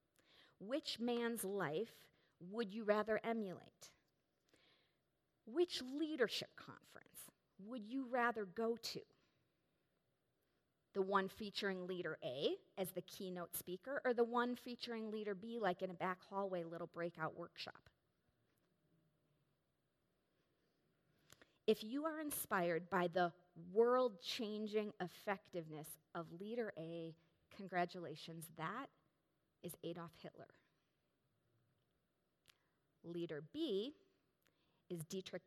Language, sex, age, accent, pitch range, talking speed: English, female, 40-59, American, 165-215 Hz, 100 wpm